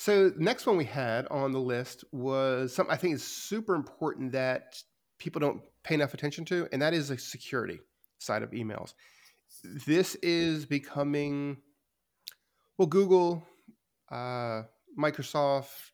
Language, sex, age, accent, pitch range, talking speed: English, male, 30-49, American, 125-150 Hz, 140 wpm